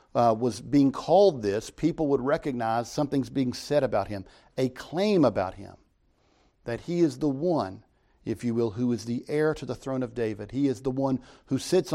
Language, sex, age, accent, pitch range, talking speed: English, male, 50-69, American, 110-150 Hz, 200 wpm